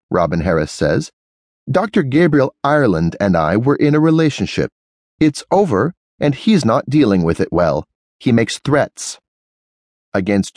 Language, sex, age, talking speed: English, male, 30-49, 140 wpm